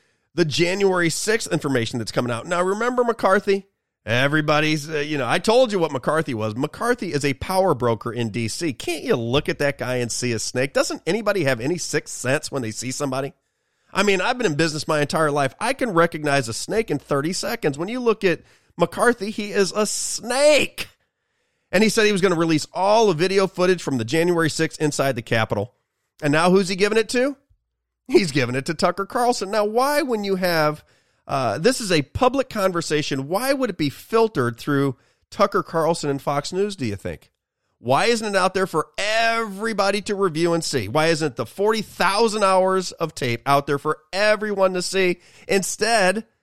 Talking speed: 200 wpm